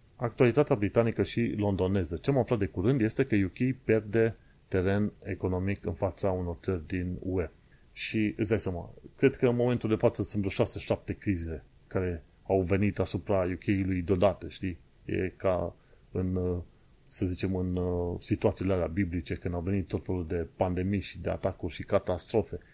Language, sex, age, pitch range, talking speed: Romanian, male, 30-49, 90-110 Hz, 160 wpm